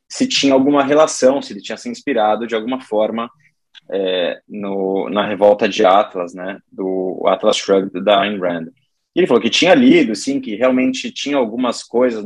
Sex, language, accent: male, Portuguese, Brazilian